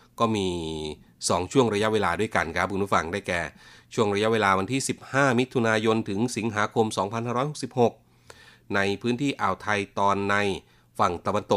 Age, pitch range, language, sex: 30-49, 90-110 Hz, Thai, male